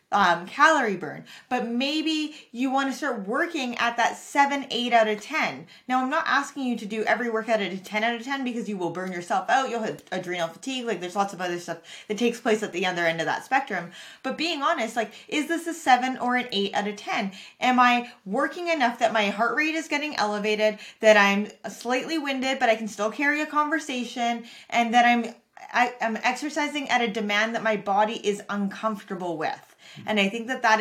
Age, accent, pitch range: 20-39, American, 210-255 Hz